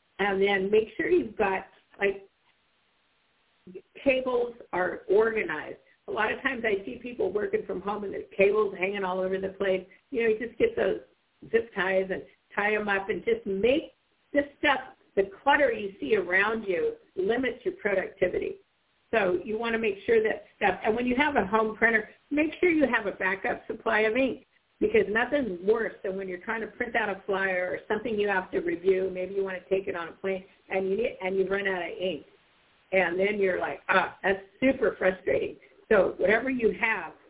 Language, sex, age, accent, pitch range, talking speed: English, female, 50-69, American, 190-250 Hz, 205 wpm